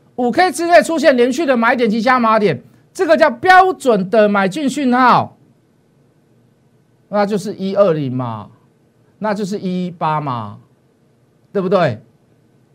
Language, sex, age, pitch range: Chinese, male, 50-69, 165-270 Hz